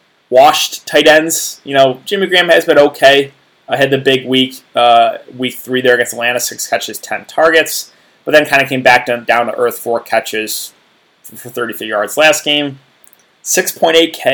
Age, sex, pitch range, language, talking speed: 20-39, male, 125-155 Hz, English, 175 wpm